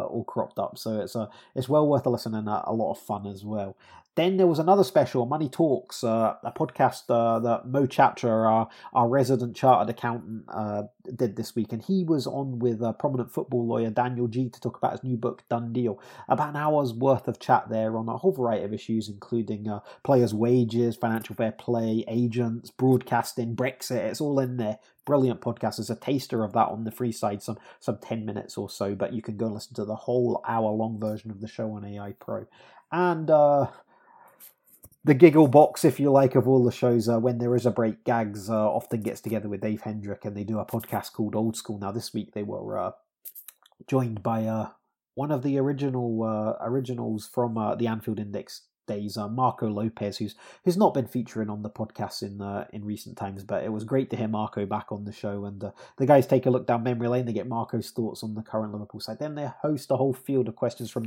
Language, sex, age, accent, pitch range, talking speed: English, male, 30-49, British, 110-130 Hz, 225 wpm